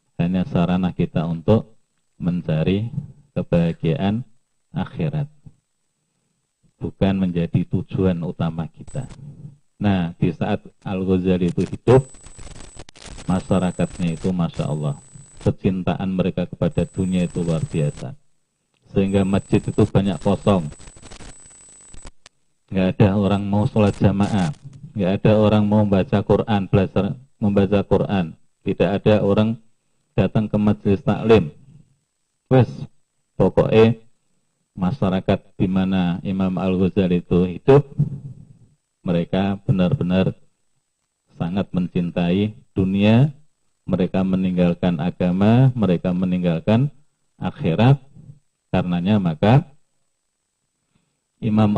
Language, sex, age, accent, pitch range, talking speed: Indonesian, male, 40-59, native, 95-135 Hz, 95 wpm